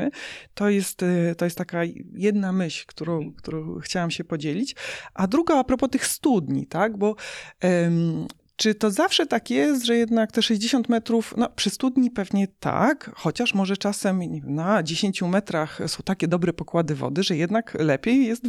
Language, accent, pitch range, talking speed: Polish, native, 170-235 Hz, 155 wpm